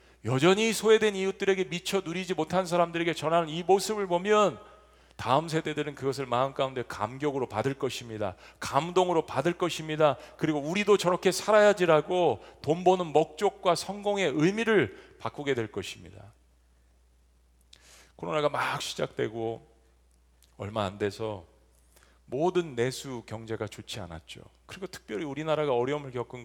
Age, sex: 40-59, male